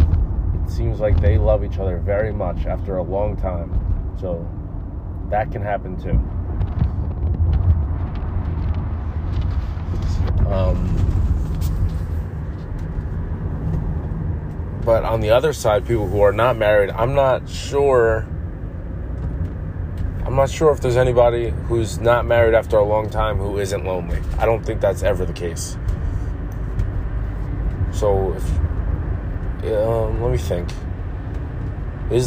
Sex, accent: male, American